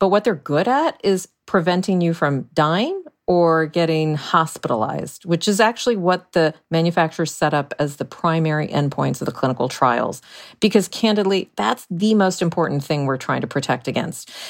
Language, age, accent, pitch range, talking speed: English, 40-59, American, 150-200 Hz, 170 wpm